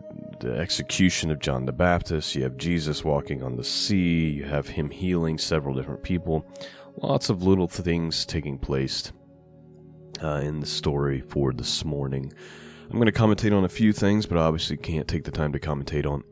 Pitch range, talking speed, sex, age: 70-85 Hz, 190 wpm, male, 30-49